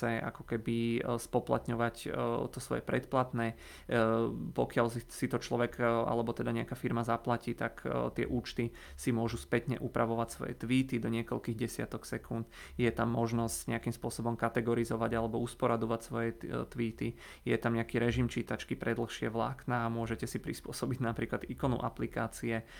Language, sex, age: Czech, male, 30-49